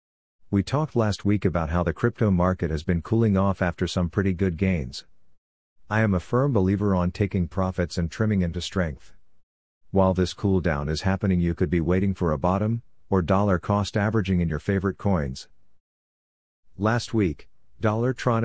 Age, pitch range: 50-69, 85-105 Hz